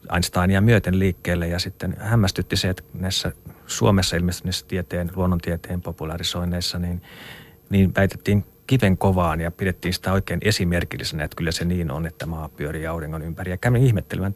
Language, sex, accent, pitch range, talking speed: Finnish, male, native, 90-105 Hz, 155 wpm